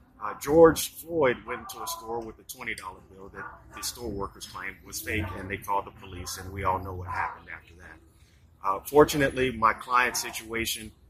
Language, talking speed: English, 195 wpm